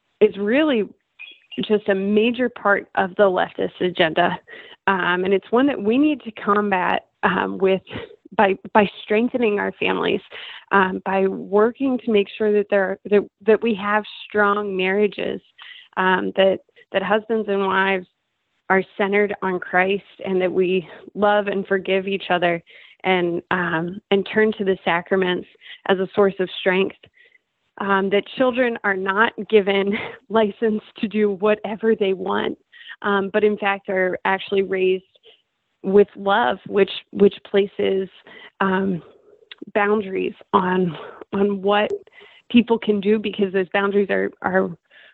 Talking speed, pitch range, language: 140 wpm, 190-215 Hz, English